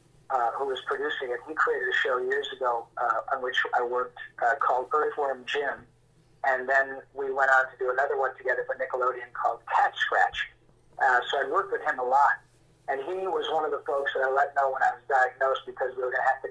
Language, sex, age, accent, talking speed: English, male, 40-59, American, 235 wpm